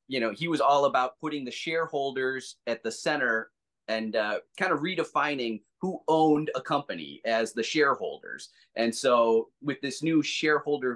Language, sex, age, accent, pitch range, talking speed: English, male, 30-49, American, 115-145 Hz, 165 wpm